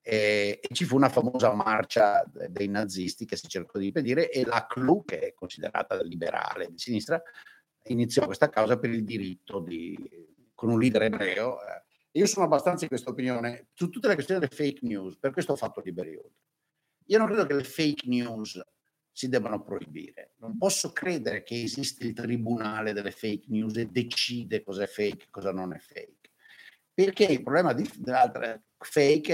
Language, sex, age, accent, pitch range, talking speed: Italian, male, 50-69, native, 110-175 Hz, 180 wpm